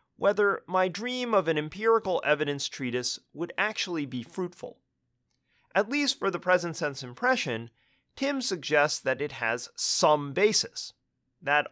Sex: male